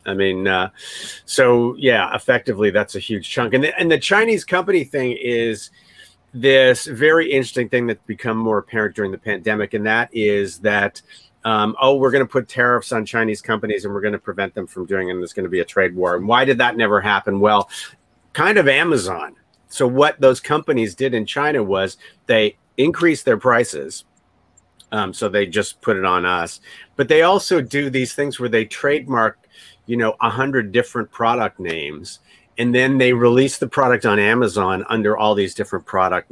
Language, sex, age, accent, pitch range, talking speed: English, male, 40-59, American, 105-130 Hz, 195 wpm